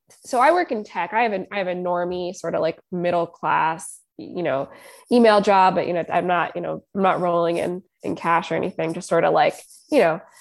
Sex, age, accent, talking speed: female, 20-39, American, 240 wpm